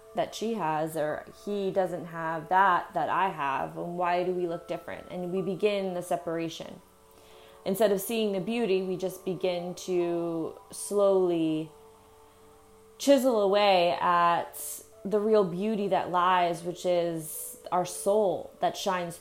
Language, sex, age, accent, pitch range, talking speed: English, female, 20-39, American, 175-200 Hz, 145 wpm